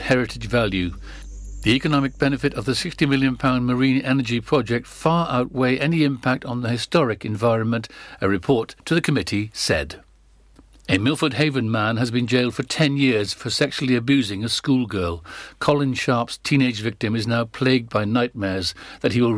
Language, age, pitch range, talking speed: English, 60-79, 105-130 Hz, 165 wpm